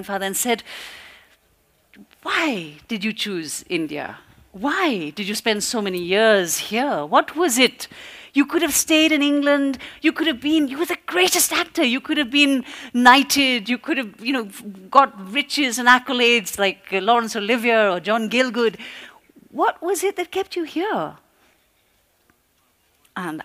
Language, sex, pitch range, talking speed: Marathi, female, 205-280 Hz, 160 wpm